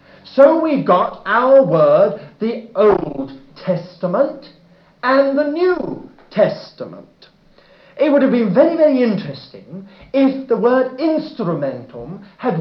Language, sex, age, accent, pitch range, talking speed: English, male, 50-69, British, 170-260 Hz, 115 wpm